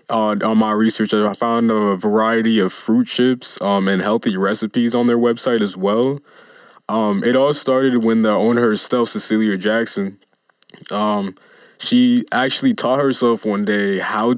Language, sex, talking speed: English, male, 160 wpm